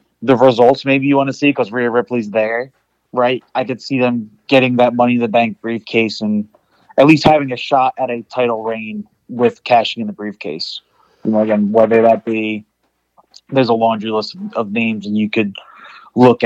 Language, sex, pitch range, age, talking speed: English, male, 115-130 Hz, 20-39, 195 wpm